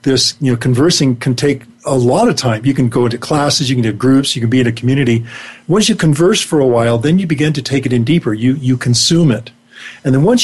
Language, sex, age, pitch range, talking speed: English, male, 50-69, 125-155 Hz, 265 wpm